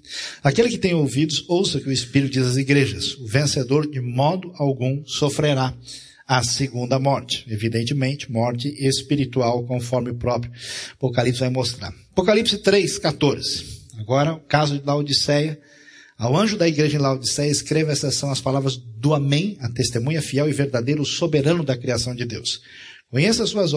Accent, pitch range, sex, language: Brazilian, 130-155 Hz, male, Portuguese